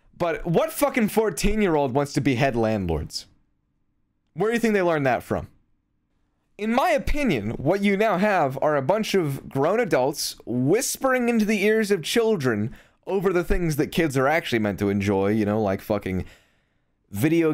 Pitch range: 115-180 Hz